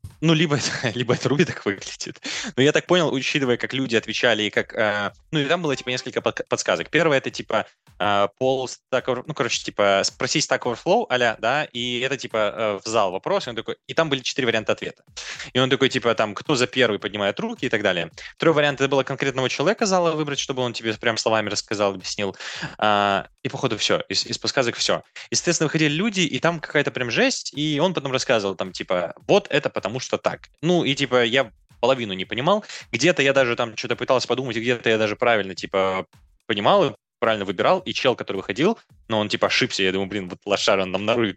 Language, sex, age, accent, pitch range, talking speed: Russian, male, 20-39, native, 110-145 Hz, 220 wpm